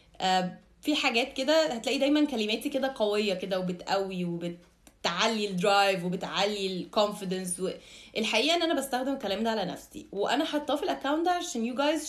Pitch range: 210-275 Hz